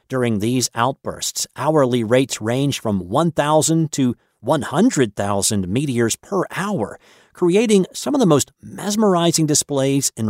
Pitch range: 115-170 Hz